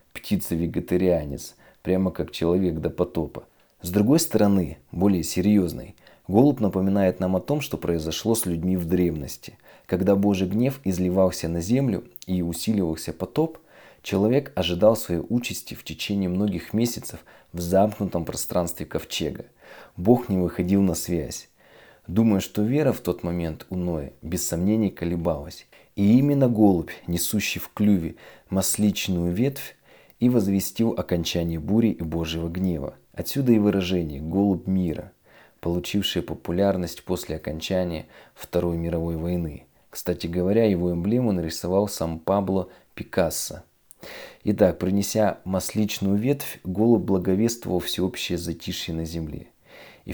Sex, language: male, Russian